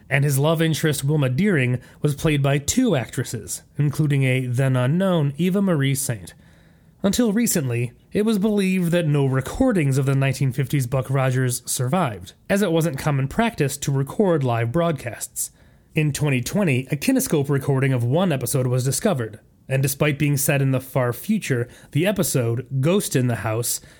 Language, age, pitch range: English, 30-49, 125-170 Hz